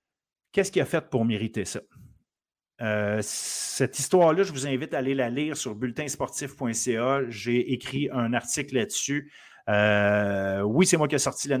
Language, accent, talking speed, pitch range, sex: French, Canadian, 160 wpm, 115-145 Hz, male